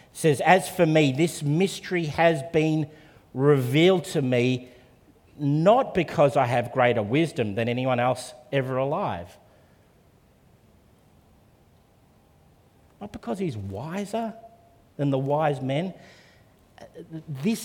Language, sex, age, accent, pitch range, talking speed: English, male, 50-69, Australian, 125-160 Hz, 105 wpm